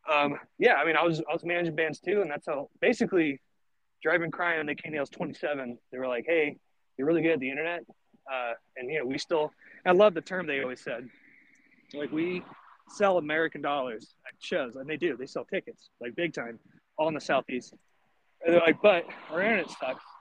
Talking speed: 220 wpm